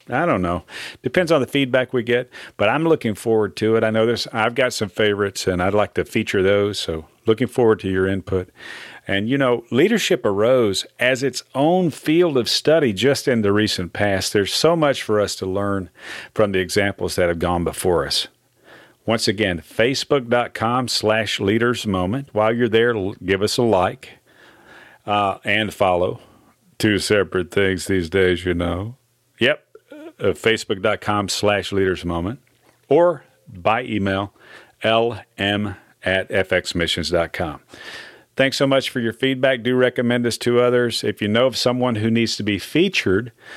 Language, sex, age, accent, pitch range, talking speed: English, male, 40-59, American, 100-125 Hz, 160 wpm